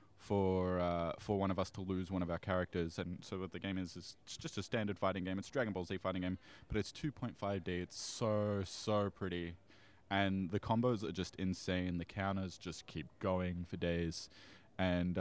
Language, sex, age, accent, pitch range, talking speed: English, male, 20-39, Australian, 90-105 Hz, 210 wpm